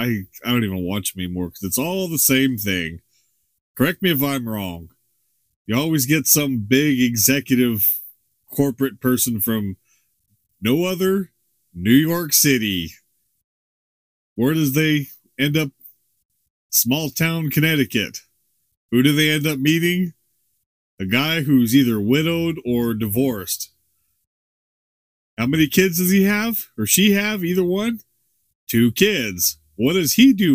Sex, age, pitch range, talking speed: male, 30-49, 115-160 Hz, 140 wpm